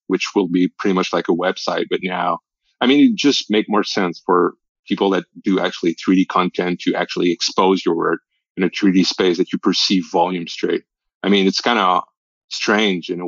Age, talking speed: 30-49, 210 wpm